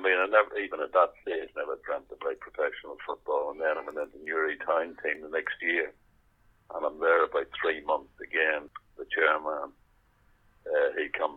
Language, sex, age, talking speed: English, male, 60-79, 200 wpm